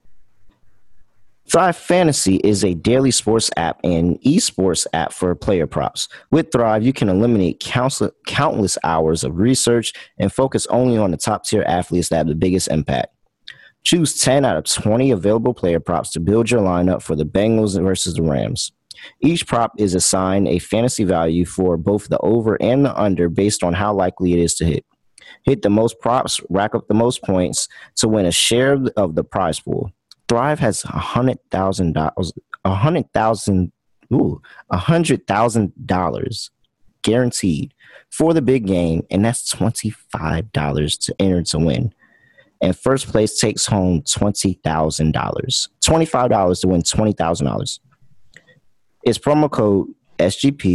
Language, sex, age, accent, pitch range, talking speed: English, male, 30-49, American, 90-115 Hz, 140 wpm